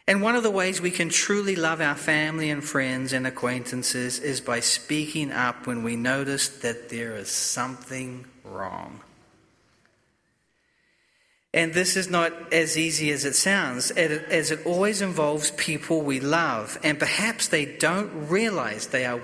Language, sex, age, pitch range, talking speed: English, male, 40-59, 145-195 Hz, 155 wpm